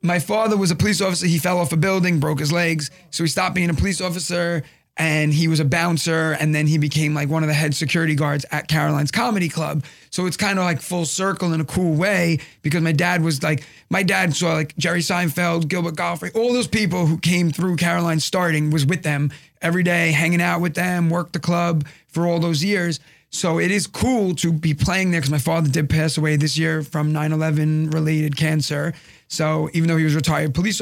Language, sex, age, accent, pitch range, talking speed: English, male, 30-49, American, 150-175 Hz, 230 wpm